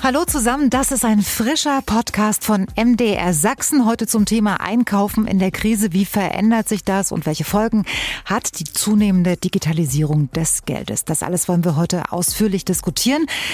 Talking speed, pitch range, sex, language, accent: 165 wpm, 180-225 Hz, female, German, German